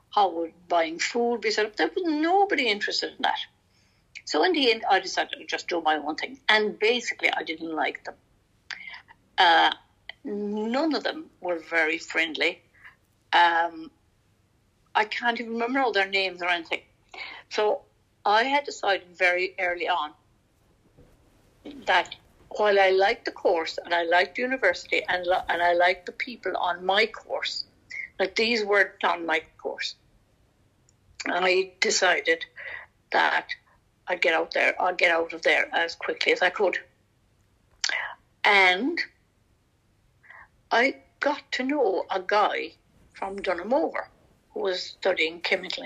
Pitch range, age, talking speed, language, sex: 175-235 Hz, 60-79, 150 wpm, English, female